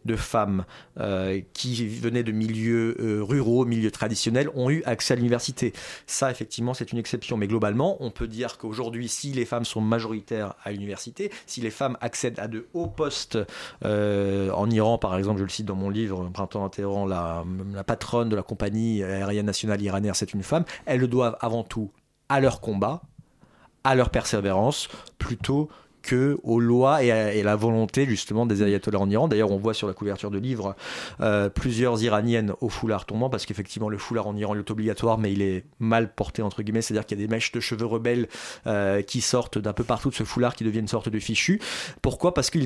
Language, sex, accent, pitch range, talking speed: French, male, French, 105-125 Hz, 210 wpm